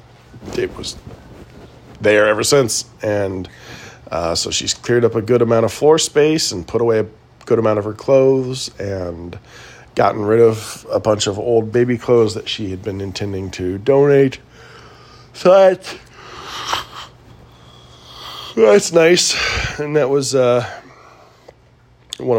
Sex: male